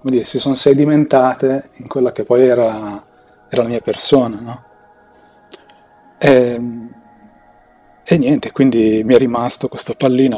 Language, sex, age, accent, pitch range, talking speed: Italian, male, 30-49, native, 105-130 Hz, 135 wpm